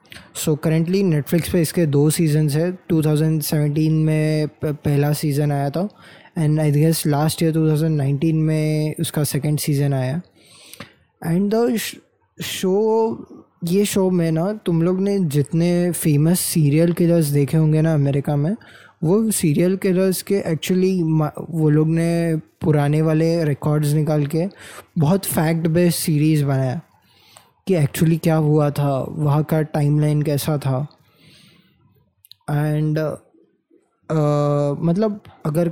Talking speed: 130 wpm